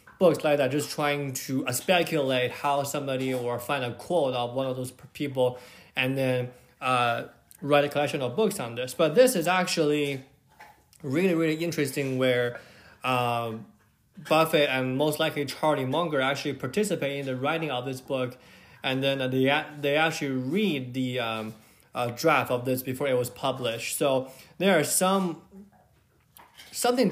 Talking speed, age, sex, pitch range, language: 160 wpm, 20-39, male, 125-155 Hz, English